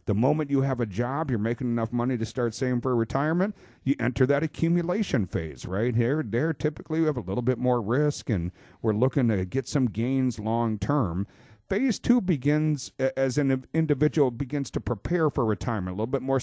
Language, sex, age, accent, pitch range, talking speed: English, male, 50-69, American, 110-145 Hz, 200 wpm